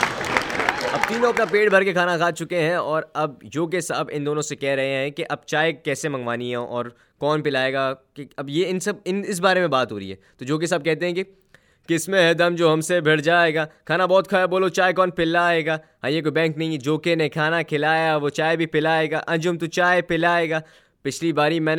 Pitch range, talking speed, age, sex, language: 155-185 Hz, 240 wpm, 20-39, male, Urdu